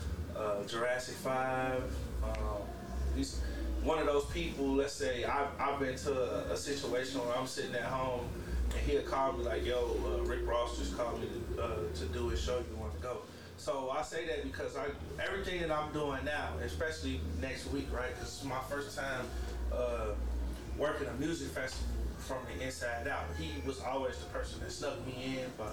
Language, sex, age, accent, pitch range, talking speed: English, male, 20-39, American, 80-130 Hz, 195 wpm